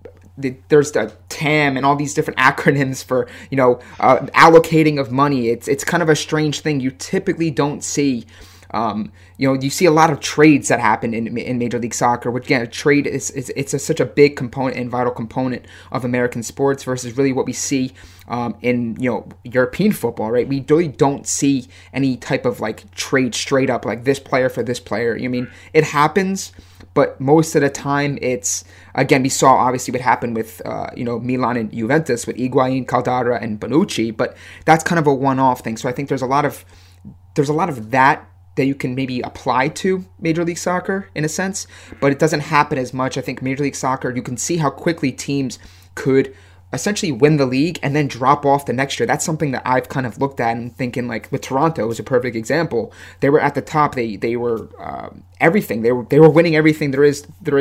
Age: 20-39